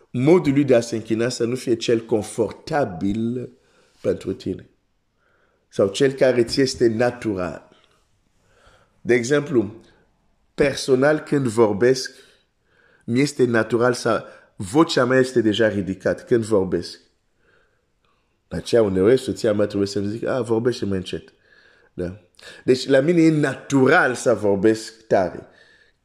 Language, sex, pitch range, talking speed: Romanian, male, 100-130 Hz, 85 wpm